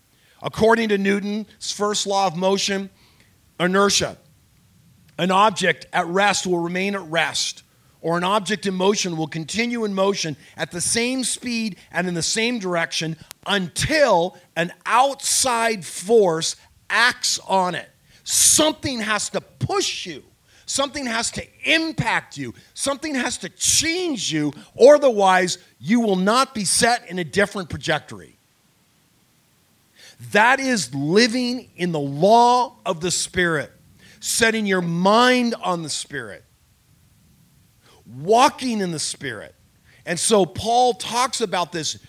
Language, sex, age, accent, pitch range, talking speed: English, male, 40-59, American, 170-235 Hz, 130 wpm